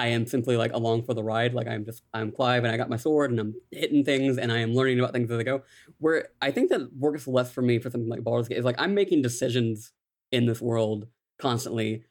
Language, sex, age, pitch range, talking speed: English, male, 20-39, 115-130 Hz, 270 wpm